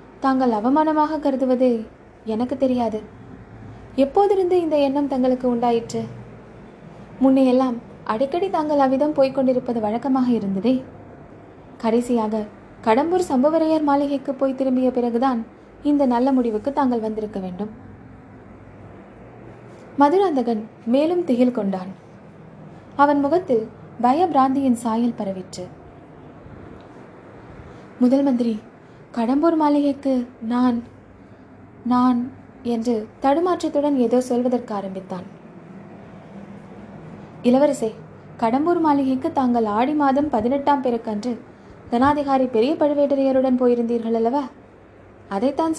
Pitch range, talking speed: 225-280 Hz, 85 wpm